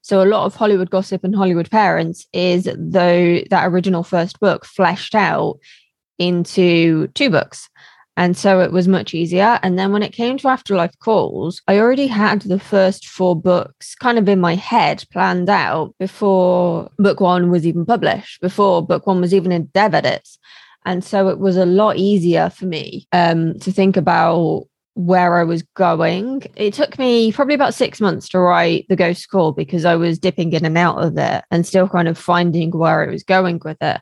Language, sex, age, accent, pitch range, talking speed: English, female, 20-39, British, 175-200 Hz, 195 wpm